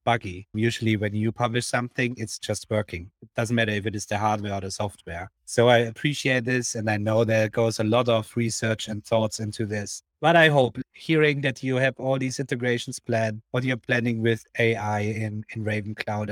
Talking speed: 210 wpm